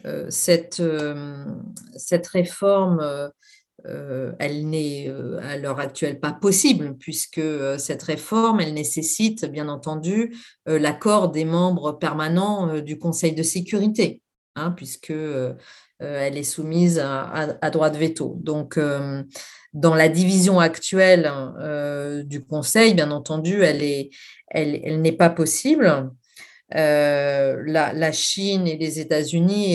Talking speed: 110 wpm